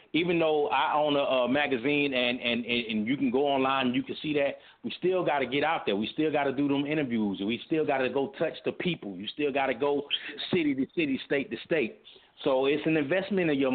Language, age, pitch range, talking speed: English, 30-49, 120-155 Hz, 255 wpm